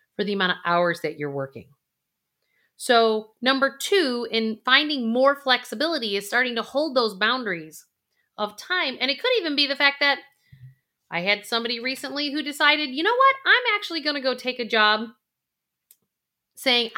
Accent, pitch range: American, 190-265 Hz